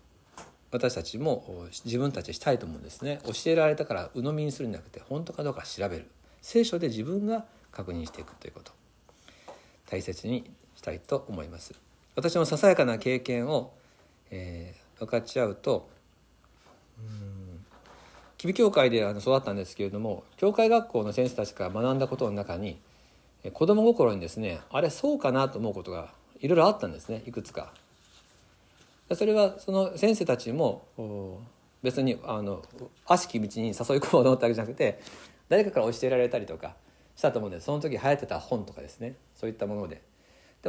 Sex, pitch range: male, 95-150 Hz